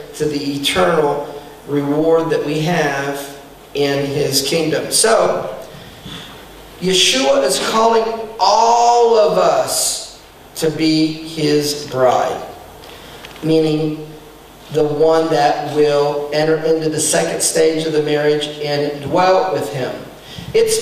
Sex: male